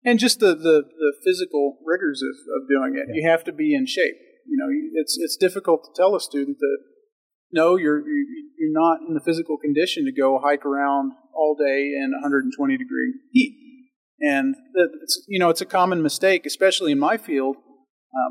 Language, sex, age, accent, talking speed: English, male, 40-59, American, 190 wpm